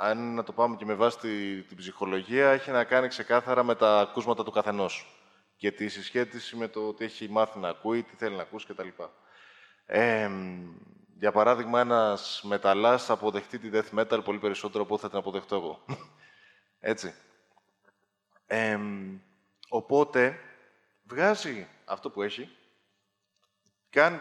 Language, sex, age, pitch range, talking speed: Greek, male, 20-39, 105-140 Hz, 145 wpm